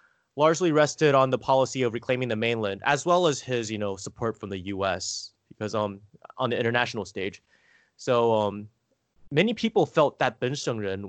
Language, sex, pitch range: English, male, 105-135 Hz